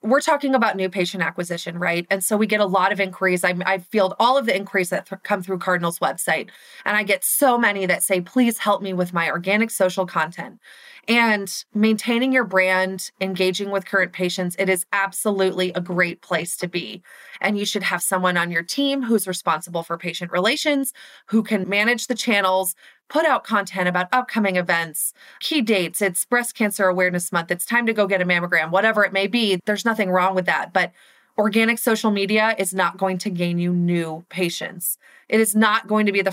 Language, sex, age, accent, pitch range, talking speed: English, female, 30-49, American, 180-225 Hz, 205 wpm